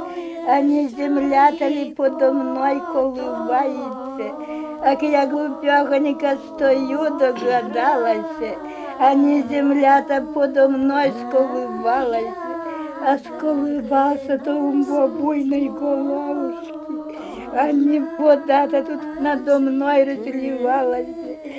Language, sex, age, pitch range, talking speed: Russian, female, 50-69, 275-300 Hz, 90 wpm